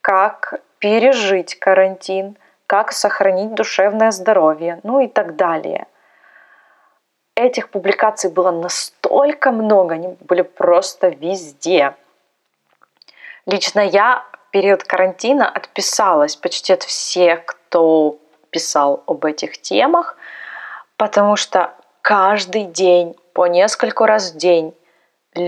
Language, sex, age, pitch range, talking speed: Russian, female, 20-39, 175-220 Hz, 100 wpm